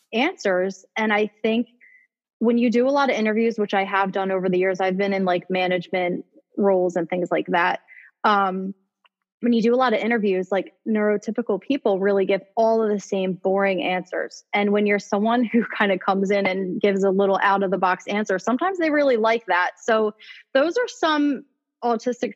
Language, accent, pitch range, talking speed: English, American, 195-240 Hz, 200 wpm